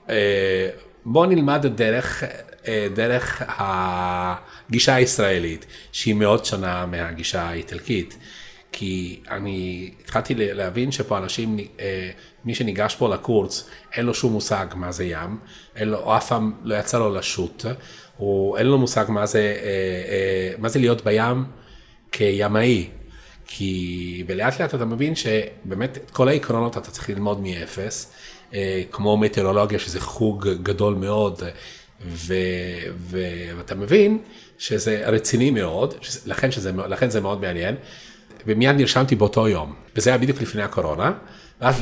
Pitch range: 95-120 Hz